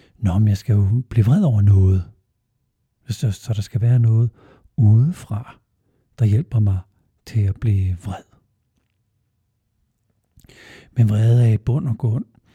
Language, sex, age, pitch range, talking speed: Danish, male, 60-79, 100-120 Hz, 145 wpm